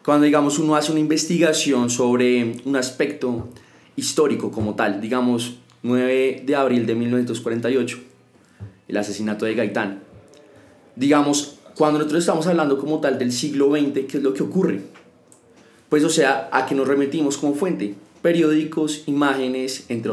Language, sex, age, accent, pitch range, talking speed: Spanish, male, 20-39, Colombian, 120-150 Hz, 145 wpm